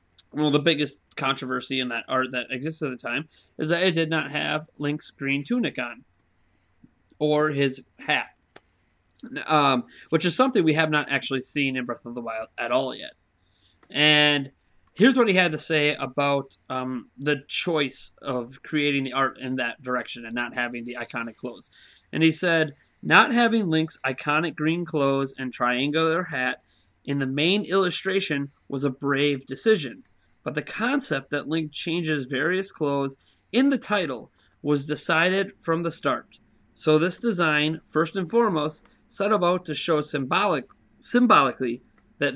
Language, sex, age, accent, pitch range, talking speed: English, male, 30-49, American, 130-165 Hz, 165 wpm